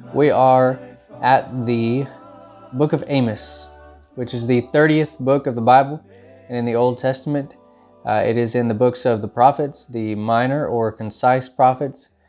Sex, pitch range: male, 115-140 Hz